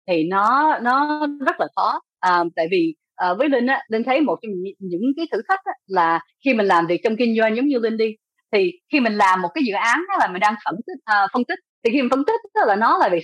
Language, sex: Vietnamese, female